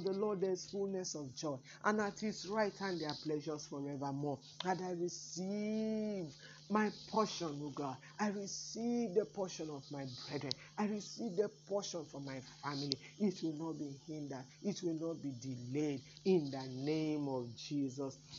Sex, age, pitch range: male, 50-69, 150-180 Hz